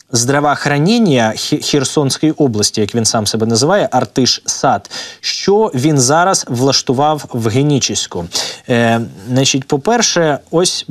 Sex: male